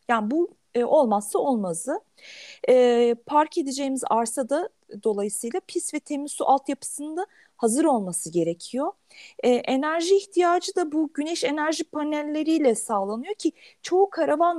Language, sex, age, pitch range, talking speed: Turkish, female, 40-59, 220-315 Hz, 120 wpm